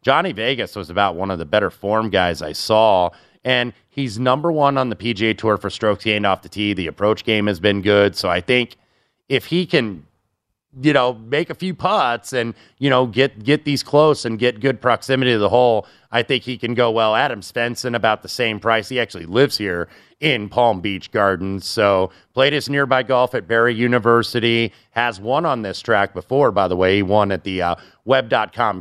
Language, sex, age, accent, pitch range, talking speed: English, male, 30-49, American, 105-125 Hz, 210 wpm